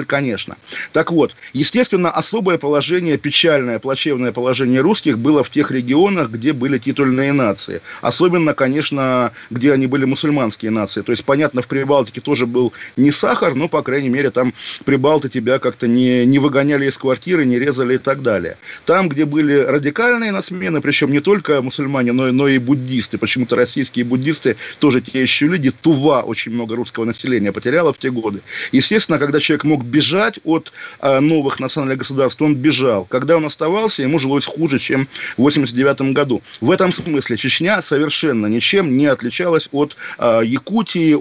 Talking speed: 165 wpm